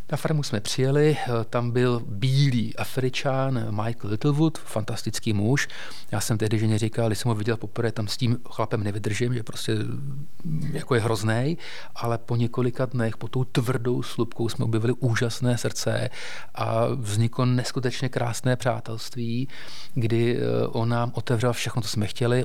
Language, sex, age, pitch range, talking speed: Czech, male, 30-49, 115-125 Hz, 150 wpm